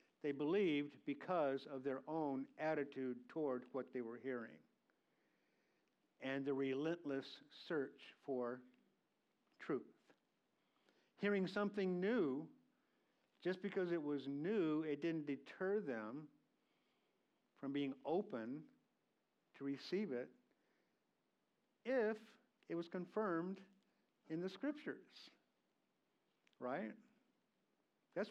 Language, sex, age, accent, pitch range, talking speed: English, male, 50-69, American, 145-215 Hz, 95 wpm